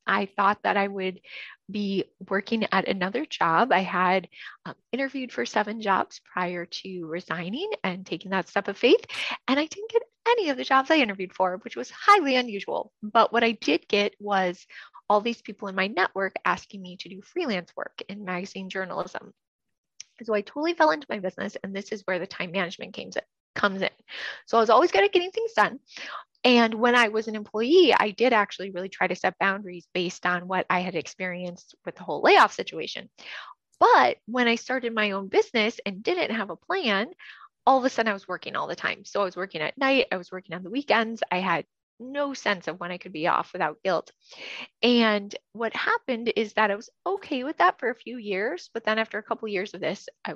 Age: 20-39